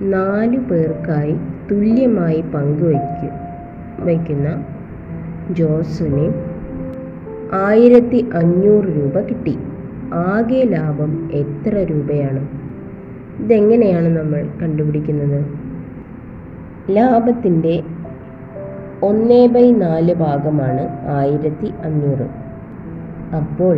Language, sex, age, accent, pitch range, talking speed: Malayalam, female, 20-39, native, 145-190 Hz, 55 wpm